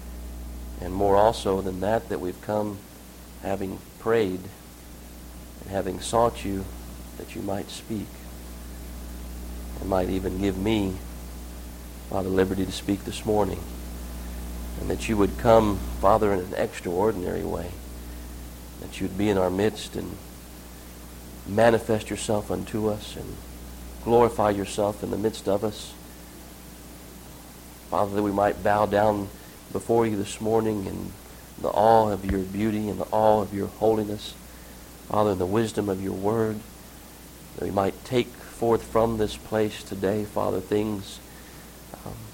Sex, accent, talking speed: male, American, 140 wpm